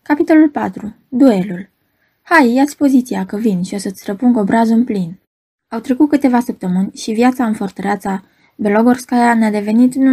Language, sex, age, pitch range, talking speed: Romanian, female, 20-39, 195-245 Hz, 155 wpm